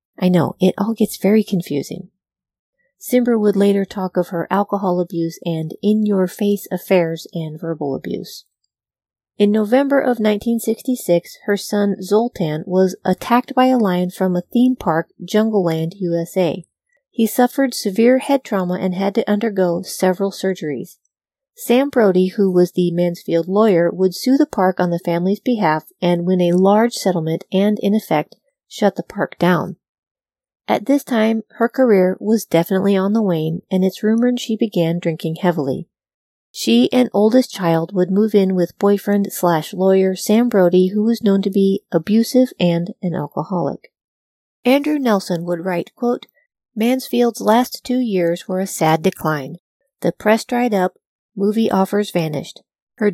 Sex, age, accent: female, 40-59, American